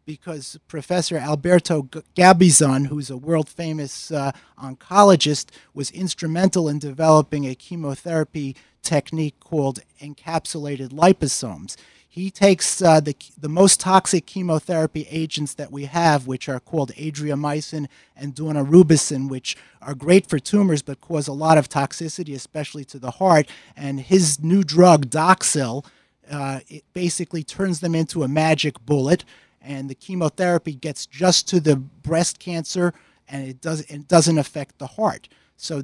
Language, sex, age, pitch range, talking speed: English, male, 30-49, 140-170 Hz, 140 wpm